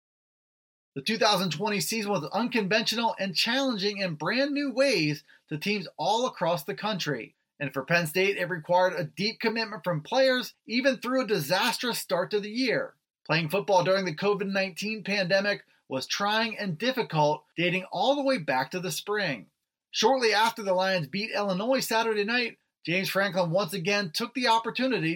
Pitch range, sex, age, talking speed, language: 175-225 Hz, male, 30-49, 165 wpm, English